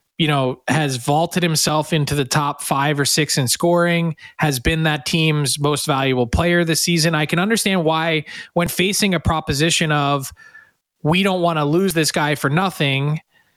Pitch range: 145-175 Hz